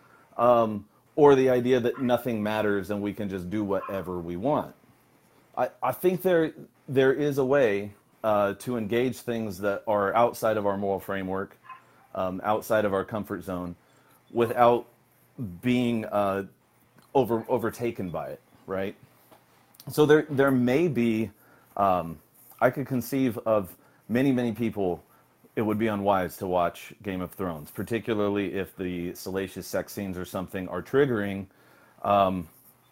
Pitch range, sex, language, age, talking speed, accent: 95-120 Hz, male, English, 30-49, 150 wpm, American